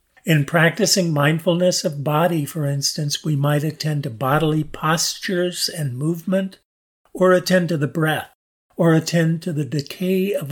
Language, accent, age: English, American, 50-69